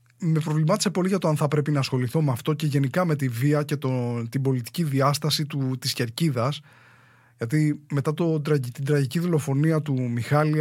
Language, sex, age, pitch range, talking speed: English, male, 20-39, 130-180 Hz, 185 wpm